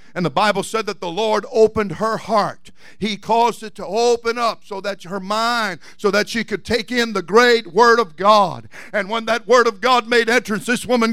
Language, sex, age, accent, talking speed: English, male, 60-79, American, 220 wpm